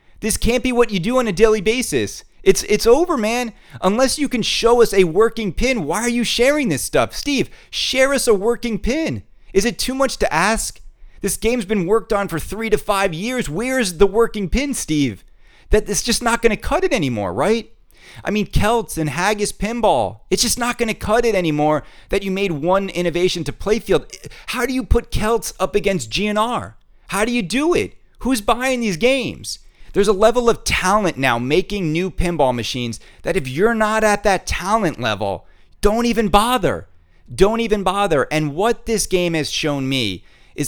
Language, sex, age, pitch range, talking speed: English, male, 30-49, 170-235 Hz, 200 wpm